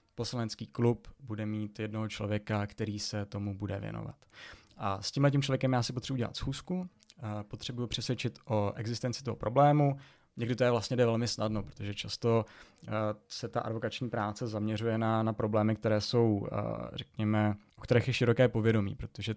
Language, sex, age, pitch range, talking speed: Czech, male, 20-39, 105-120 Hz, 165 wpm